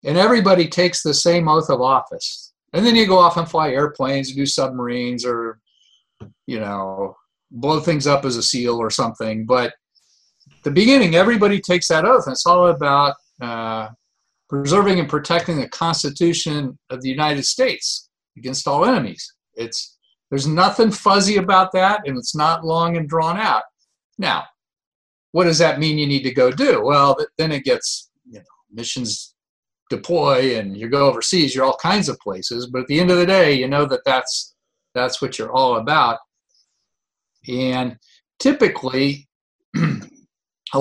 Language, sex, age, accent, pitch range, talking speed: English, male, 50-69, American, 130-175 Hz, 165 wpm